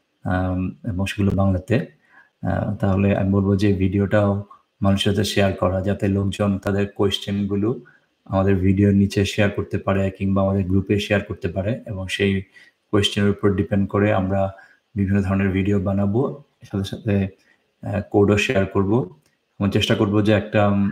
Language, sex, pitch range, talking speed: Bengali, male, 100-105 Hz, 140 wpm